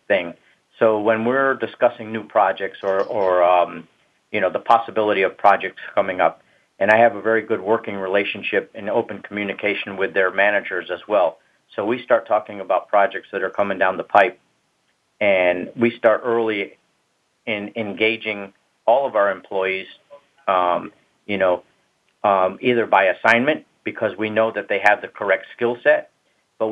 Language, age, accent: English, 50-69, American